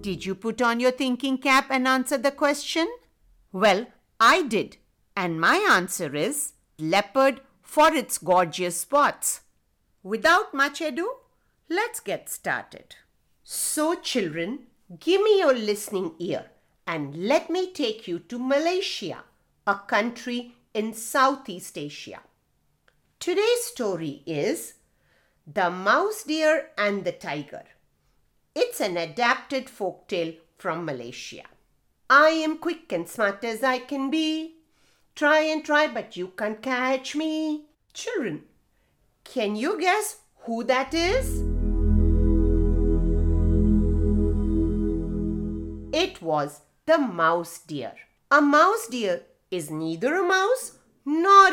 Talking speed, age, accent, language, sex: 115 wpm, 50-69, Indian, English, female